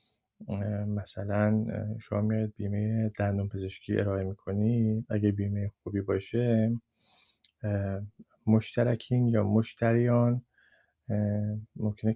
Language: Persian